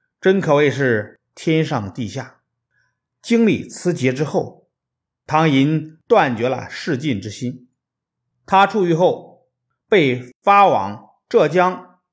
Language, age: Chinese, 50-69